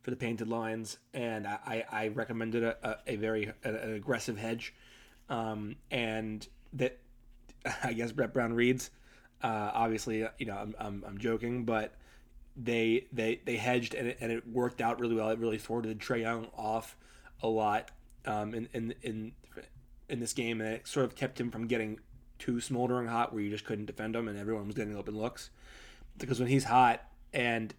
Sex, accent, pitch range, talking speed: male, American, 110-125 Hz, 190 wpm